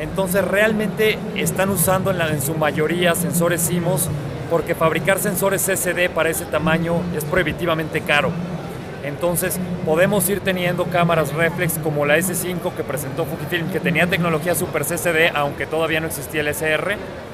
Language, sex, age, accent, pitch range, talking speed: Spanish, male, 30-49, Mexican, 155-180 Hz, 150 wpm